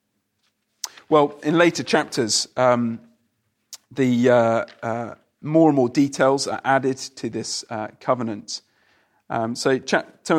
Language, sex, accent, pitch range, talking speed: English, male, British, 120-165 Hz, 125 wpm